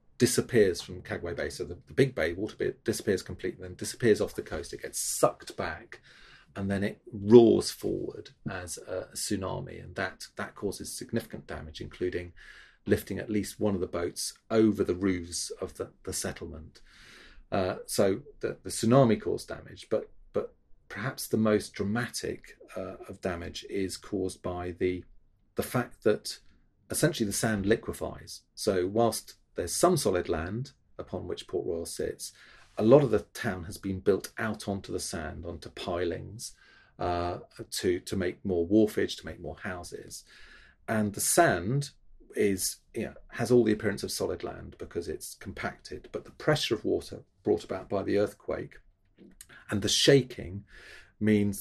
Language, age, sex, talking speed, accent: English, 40-59, male, 165 wpm, British